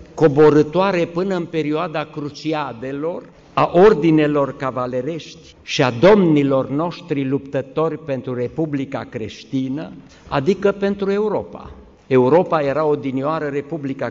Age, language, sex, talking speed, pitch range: 50-69, English, male, 100 wpm, 130-165 Hz